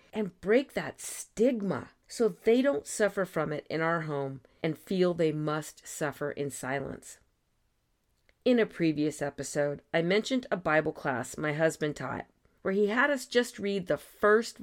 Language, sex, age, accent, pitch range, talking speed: English, female, 40-59, American, 145-220 Hz, 165 wpm